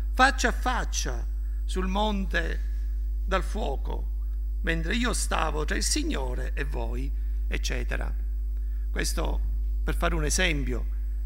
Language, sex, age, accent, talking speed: Italian, male, 60-79, native, 110 wpm